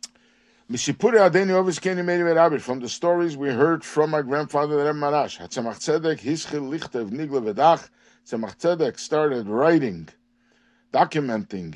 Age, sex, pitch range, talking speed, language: 60-79, male, 135-205 Hz, 80 wpm, English